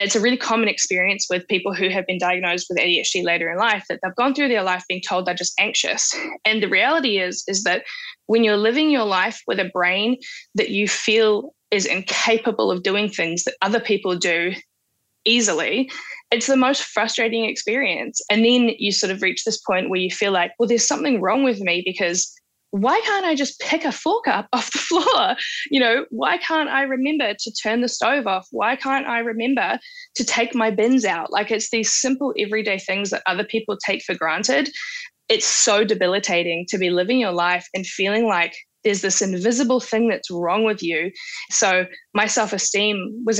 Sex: female